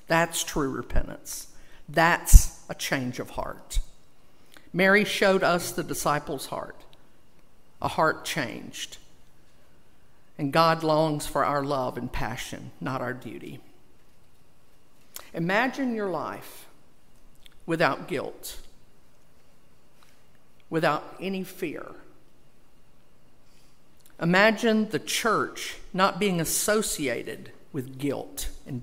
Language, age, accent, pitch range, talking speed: English, 50-69, American, 145-210 Hz, 95 wpm